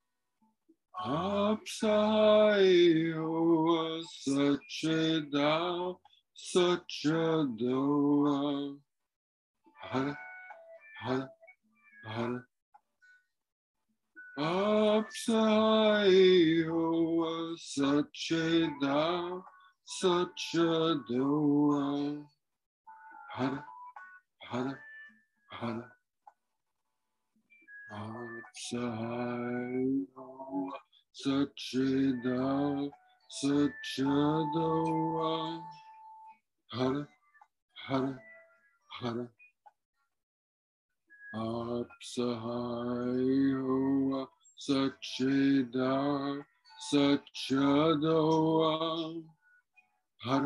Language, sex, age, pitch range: English, male, 60-79, 130-215 Hz